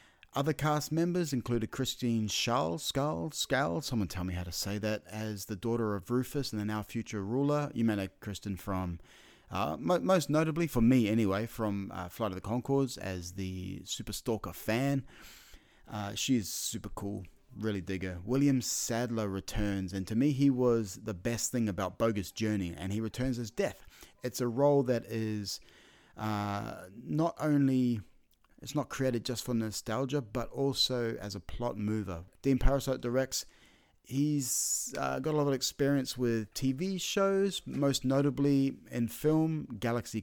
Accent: Australian